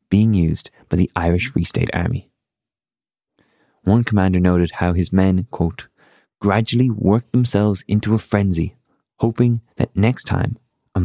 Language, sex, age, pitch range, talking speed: English, male, 20-39, 95-125 Hz, 140 wpm